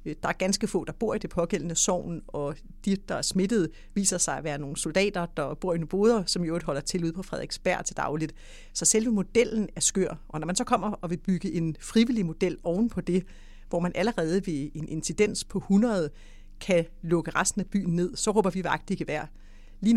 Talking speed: 230 wpm